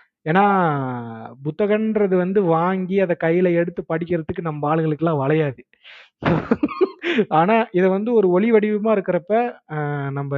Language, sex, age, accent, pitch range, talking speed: Tamil, male, 30-49, native, 140-180 Hz, 110 wpm